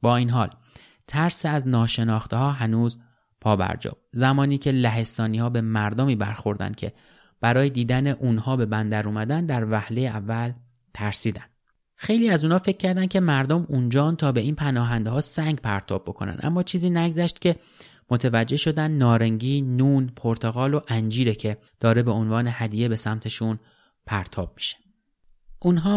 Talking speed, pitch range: 150 wpm, 110-130 Hz